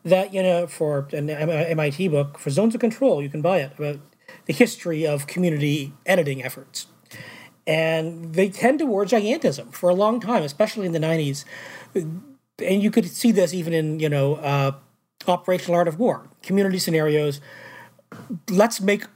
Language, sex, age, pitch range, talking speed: English, male, 40-59, 145-195 Hz, 165 wpm